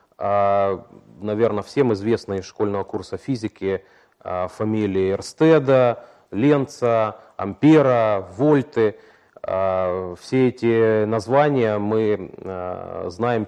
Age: 30-49